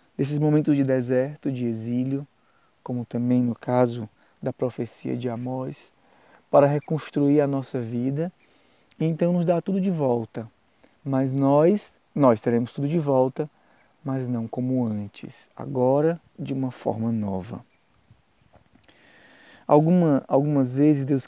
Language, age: Portuguese, 20-39